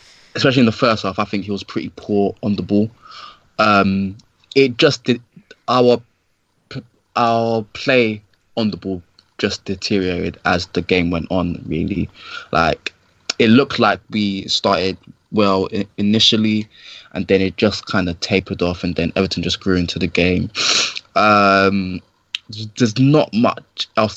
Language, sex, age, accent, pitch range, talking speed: English, male, 20-39, British, 95-110 Hz, 150 wpm